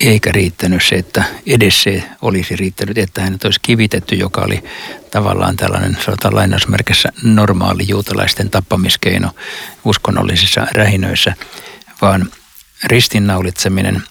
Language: Finnish